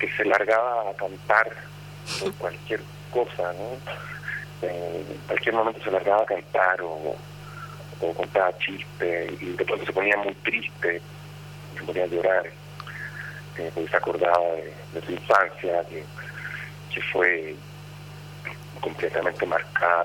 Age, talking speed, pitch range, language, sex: 50-69, 125 wpm, 100-145 Hz, Spanish, male